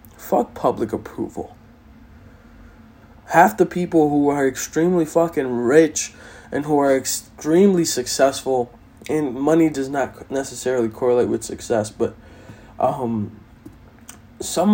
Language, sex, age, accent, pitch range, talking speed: English, male, 20-39, American, 125-180 Hz, 110 wpm